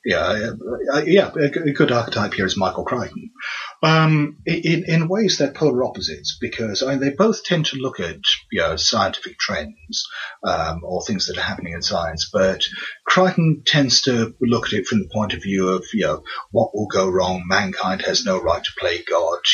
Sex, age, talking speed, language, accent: male, 30-49, 195 wpm, English, British